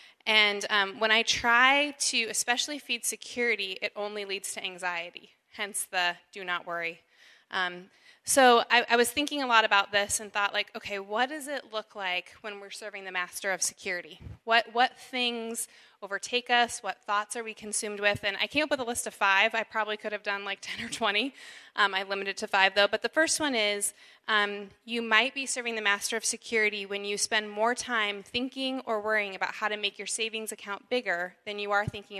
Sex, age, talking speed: female, 20-39, 210 wpm